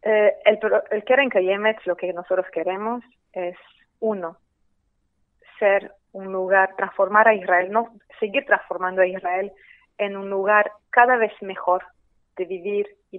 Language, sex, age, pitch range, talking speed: Spanish, female, 30-49, 190-225 Hz, 140 wpm